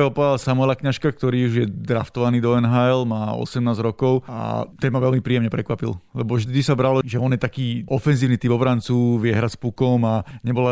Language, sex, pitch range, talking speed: Slovak, male, 120-130 Hz, 190 wpm